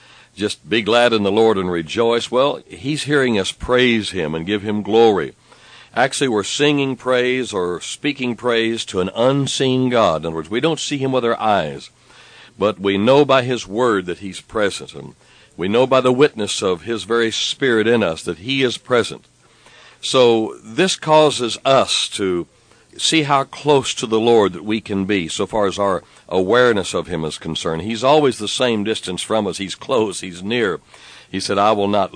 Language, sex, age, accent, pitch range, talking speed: English, male, 60-79, American, 100-130 Hz, 195 wpm